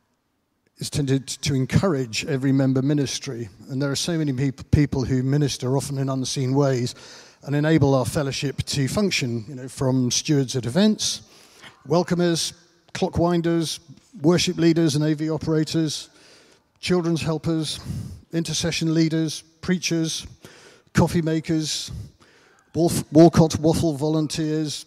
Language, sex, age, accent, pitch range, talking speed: English, male, 50-69, British, 130-160 Hz, 120 wpm